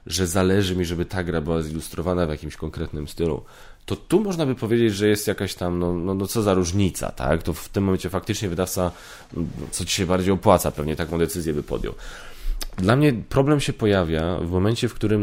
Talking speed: 215 wpm